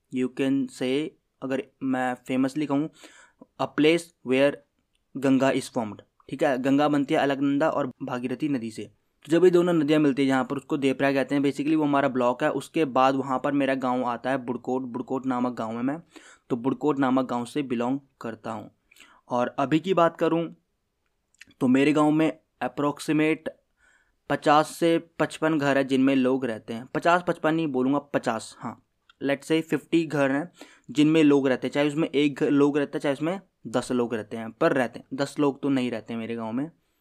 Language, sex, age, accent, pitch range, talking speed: Hindi, male, 20-39, native, 130-150 Hz, 200 wpm